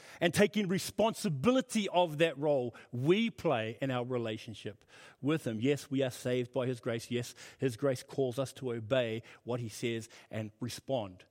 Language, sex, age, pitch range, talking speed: English, male, 40-59, 120-150 Hz, 170 wpm